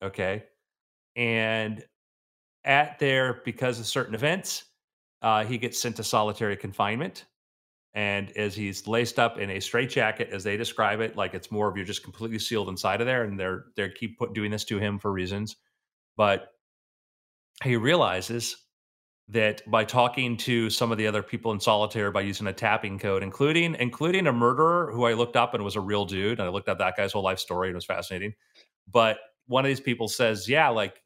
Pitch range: 100-120 Hz